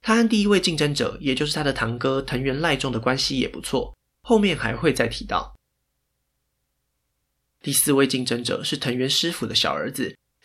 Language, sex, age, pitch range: Chinese, male, 20-39, 120-160 Hz